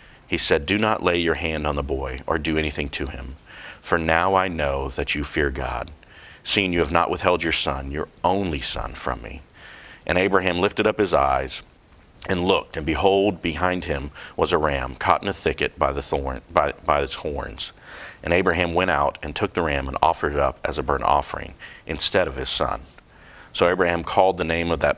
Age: 40-59